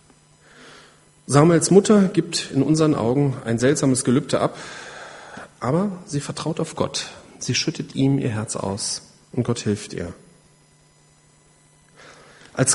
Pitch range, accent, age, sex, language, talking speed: 115-155 Hz, German, 40-59, male, German, 120 wpm